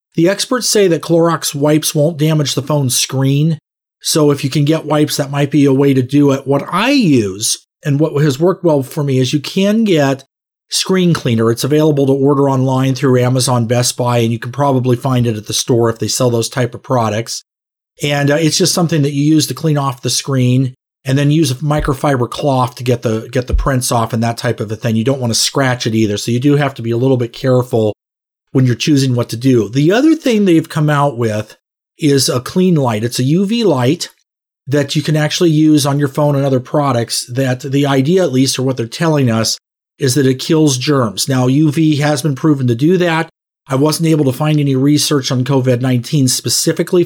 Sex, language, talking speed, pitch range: male, English, 230 wpm, 125-155 Hz